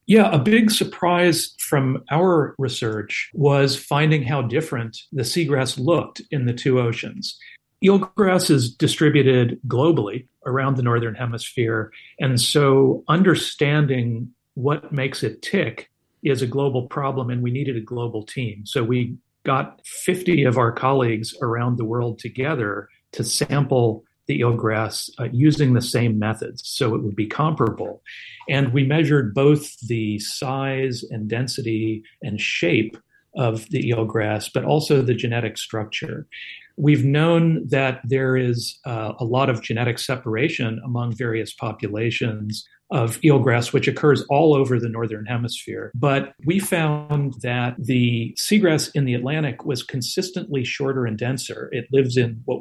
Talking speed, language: 145 wpm, English